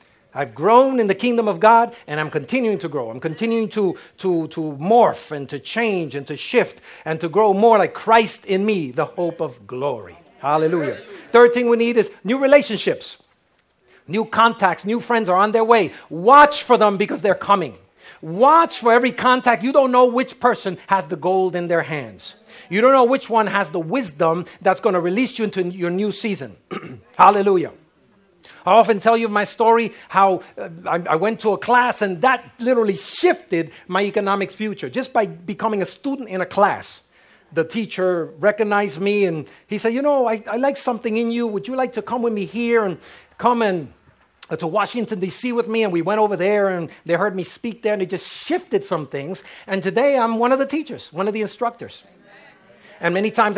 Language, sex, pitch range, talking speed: English, male, 180-235 Hz, 205 wpm